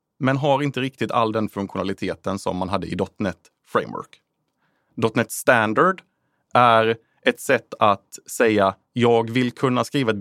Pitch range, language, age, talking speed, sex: 105-140 Hz, Swedish, 30-49, 145 wpm, male